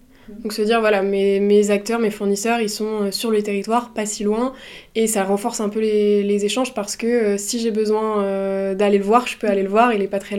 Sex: female